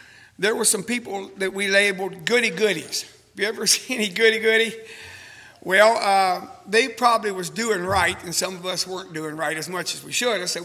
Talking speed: 195 wpm